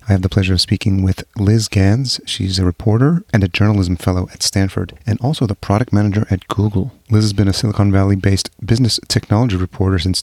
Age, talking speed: 30-49, 205 wpm